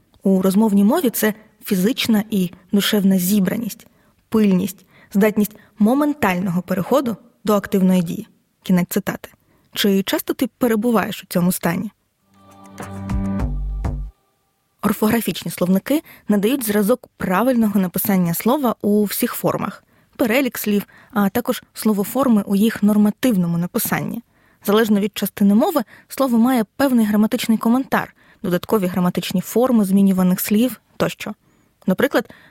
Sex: female